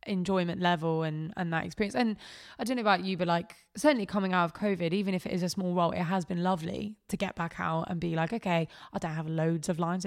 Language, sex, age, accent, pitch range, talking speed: English, female, 20-39, British, 180-230 Hz, 260 wpm